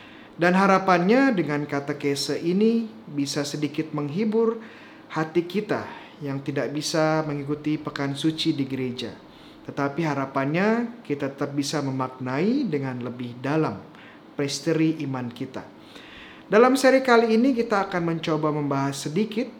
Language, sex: Indonesian, male